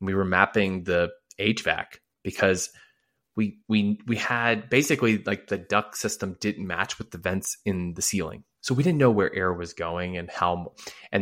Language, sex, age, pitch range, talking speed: English, male, 20-39, 95-115 Hz, 180 wpm